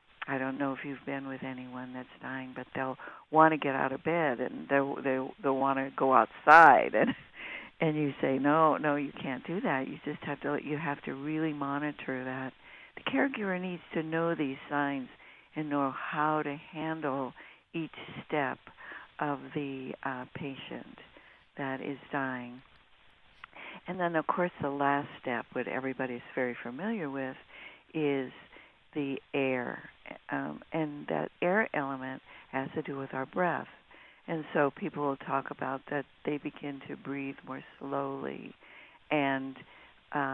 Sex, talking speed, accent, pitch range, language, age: female, 160 wpm, American, 135-150 Hz, English, 60-79